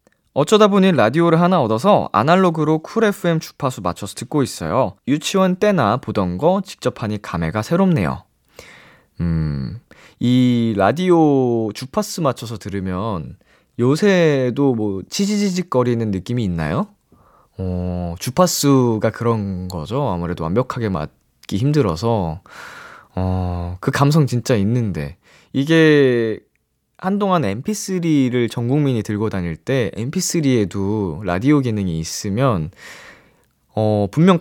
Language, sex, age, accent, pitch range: Korean, male, 20-39, native, 100-165 Hz